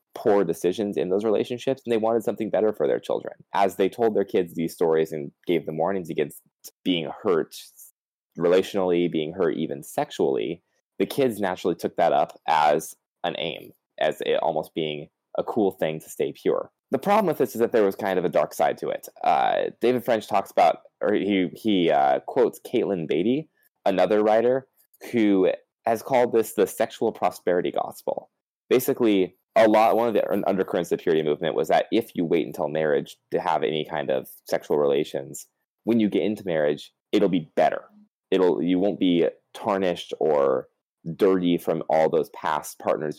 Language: English